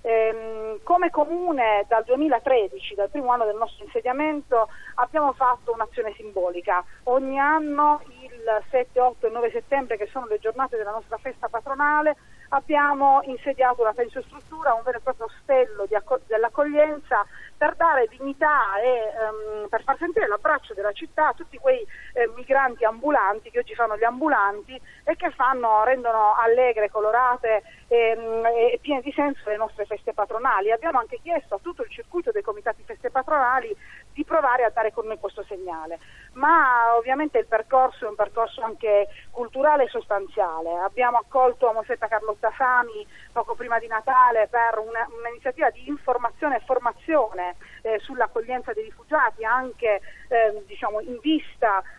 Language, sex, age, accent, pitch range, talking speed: Italian, female, 30-49, native, 220-280 Hz, 155 wpm